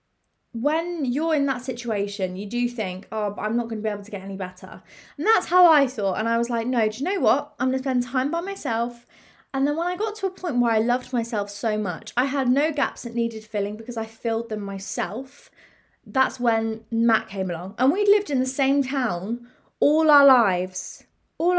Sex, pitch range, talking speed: female, 210-275 Hz, 230 wpm